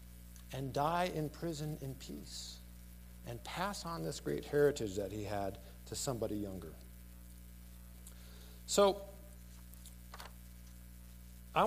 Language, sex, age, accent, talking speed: English, male, 50-69, American, 105 wpm